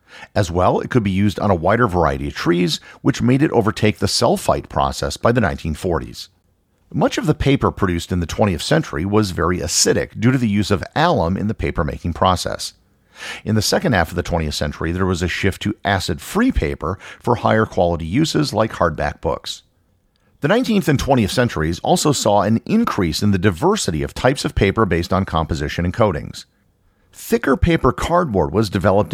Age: 50-69